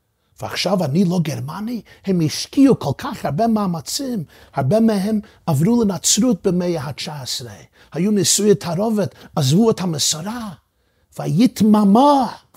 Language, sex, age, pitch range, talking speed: Hebrew, male, 50-69, 110-180 Hz, 110 wpm